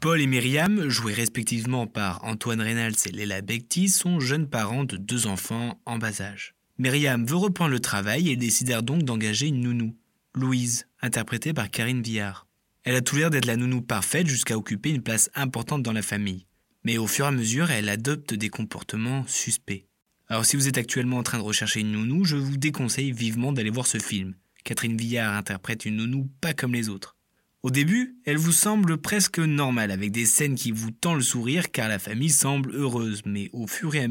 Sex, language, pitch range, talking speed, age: male, French, 110-145 Hz, 205 wpm, 20-39